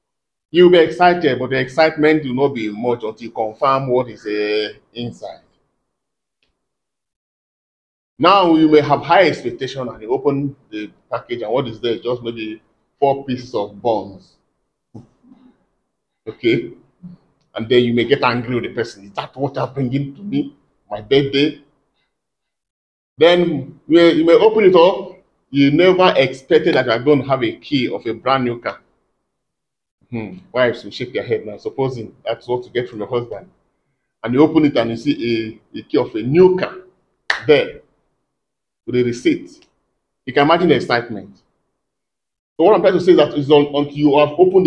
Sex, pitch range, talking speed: male, 125-170 Hz, 170 wpm